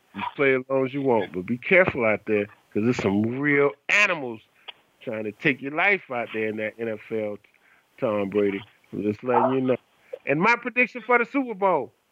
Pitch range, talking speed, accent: 115-180 Hz, 205 wpm, American